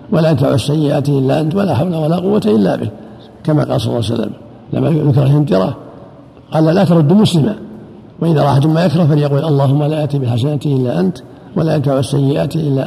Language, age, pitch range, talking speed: Arabic, 50-69, 140-160 Hz, 180 wpm